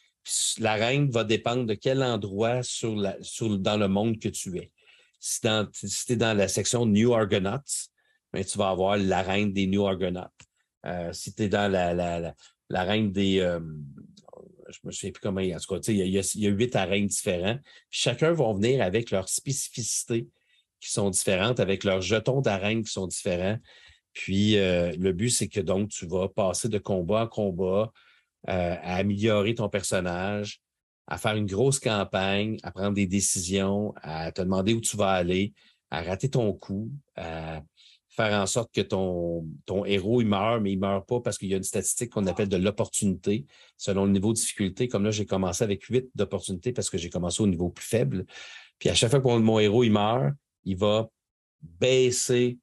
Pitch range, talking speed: 95-115 Hz, 195 wpm